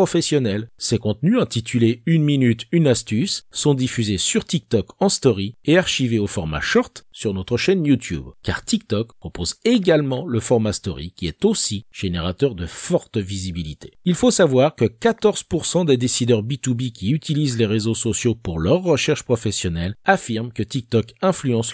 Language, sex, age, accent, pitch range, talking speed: French, male, 50-69, French, 100-155 Hz, 165 wpm